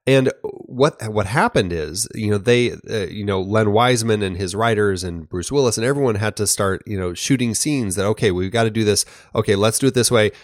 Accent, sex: American, male